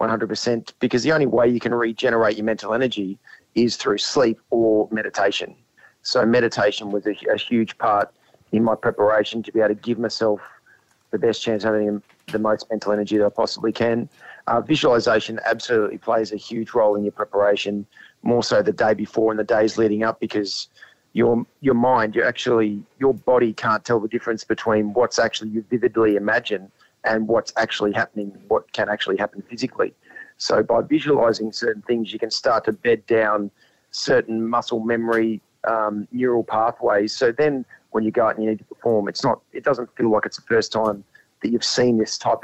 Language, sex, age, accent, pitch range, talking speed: English, male, 30-49, Australian, 105-120 Hz, 190 wpm